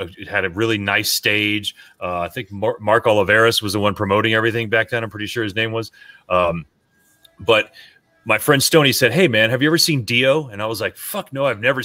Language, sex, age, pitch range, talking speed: English, male, 30-49, 105-125 Hz, 235 wpm